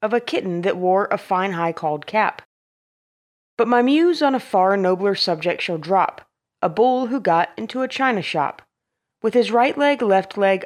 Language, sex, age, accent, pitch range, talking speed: English, female, 30-49, American, 175-240 Hz, 185 wpm